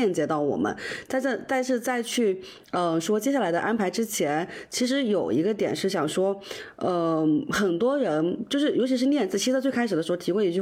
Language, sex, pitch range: Chinese, female, 170-235 Hz